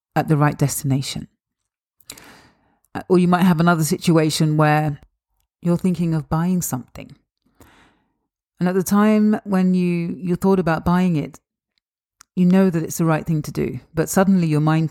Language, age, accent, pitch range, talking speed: English, 40-59, British, 145-170 Hz, 160 wpm